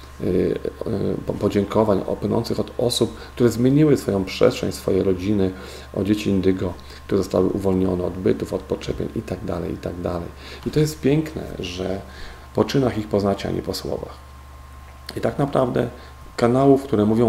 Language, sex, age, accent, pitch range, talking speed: Polish, male, 40-59, native, 65-105 Hz, 155 wpm